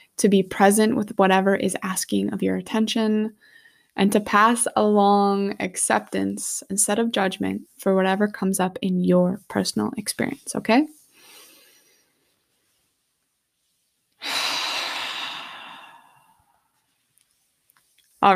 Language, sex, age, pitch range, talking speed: English, female, 20-39, 185-230 Hz, 90 wpm